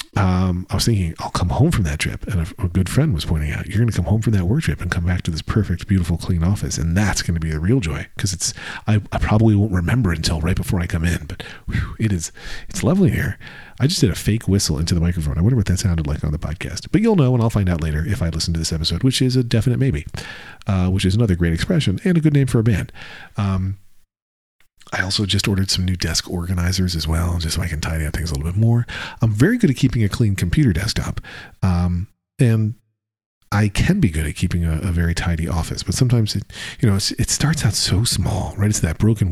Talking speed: 265 wpm